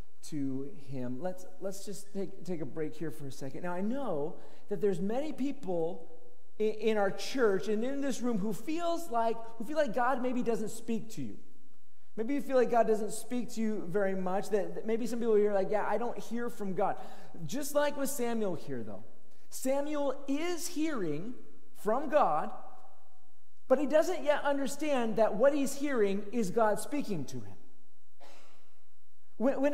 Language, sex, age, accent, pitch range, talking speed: English, male, 40-59, American, 210-275 Hz, 180 wpm